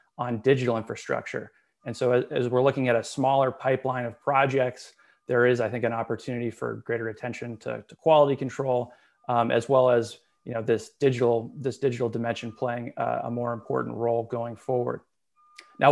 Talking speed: 175 wpm